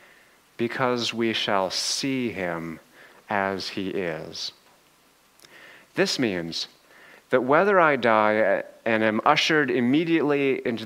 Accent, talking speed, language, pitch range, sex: American, 105 wpm, English, 105-125 Hz, male